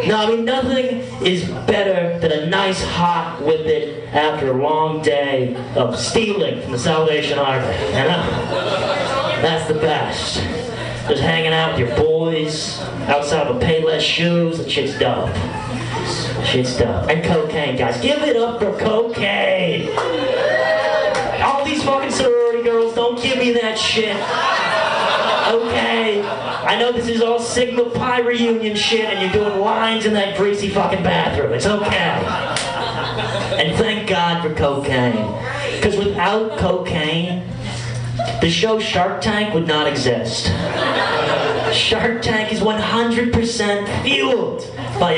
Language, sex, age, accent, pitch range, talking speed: English, male, 30-49, American, 140-220 Hz, 135 wpm